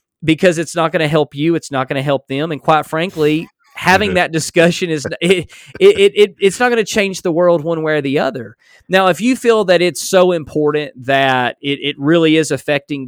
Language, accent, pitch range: English, American, 125-175 Hz